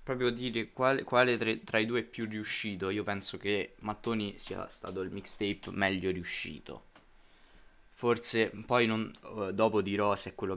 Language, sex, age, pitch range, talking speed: Italian, male, 20-39, 90-105 Hz, 160 wpm